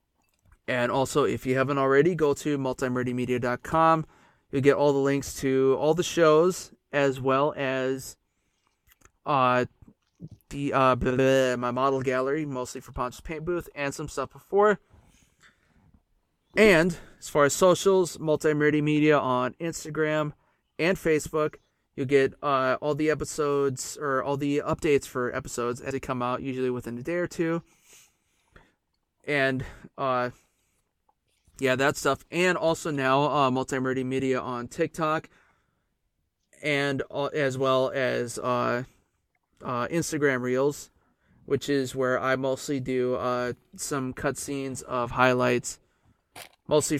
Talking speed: 130 wpm